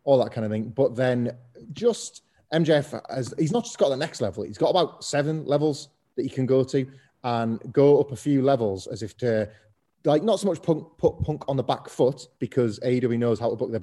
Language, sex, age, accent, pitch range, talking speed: English, male, 30-49, British, 115-140 Hz, 235 wpm